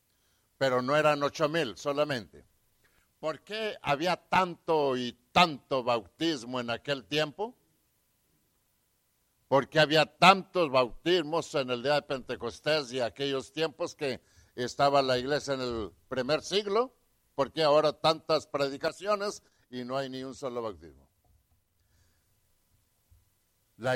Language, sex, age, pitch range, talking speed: English, male, 60-79, 115-155 Hz, 125 wpm